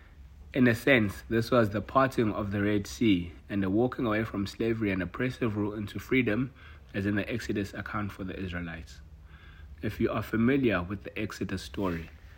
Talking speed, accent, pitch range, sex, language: 185 wpm, South African, 85-110 Hz, male, English